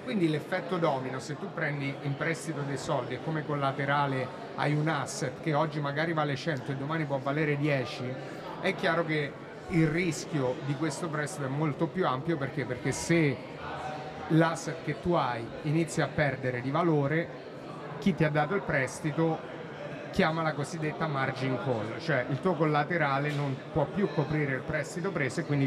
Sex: male